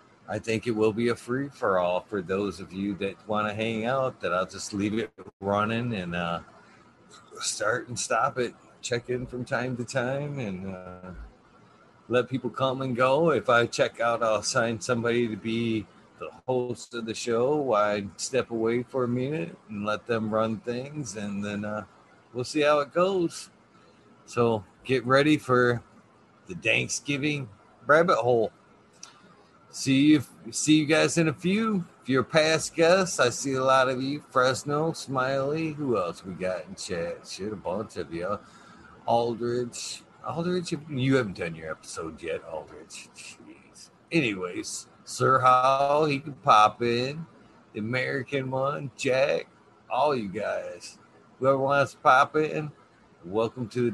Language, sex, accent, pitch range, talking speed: English, male, American, 110-140 Hz, 165 wpm